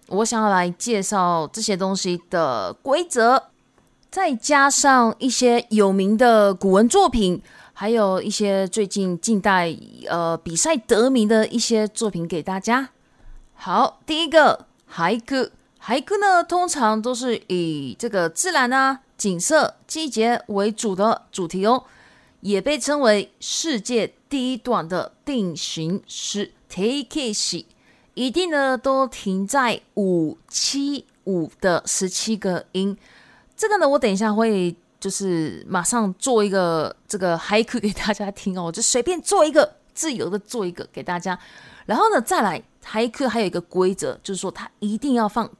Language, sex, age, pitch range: Japanese, female, 30-49, 190-255 Hz